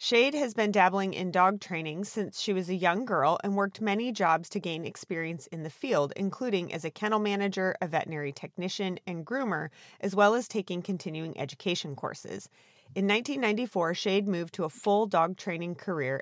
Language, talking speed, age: English, 185 wpm, 30-49